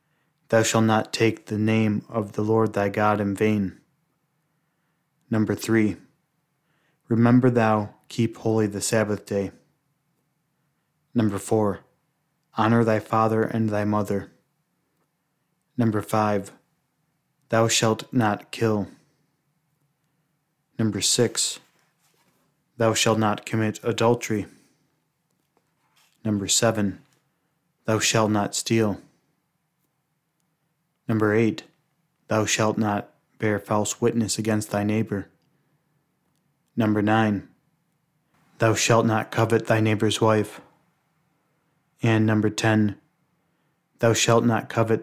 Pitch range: 110-150 Hz